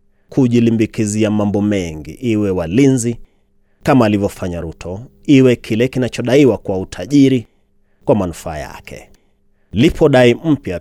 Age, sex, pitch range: 30-49, male, 90-120 Hz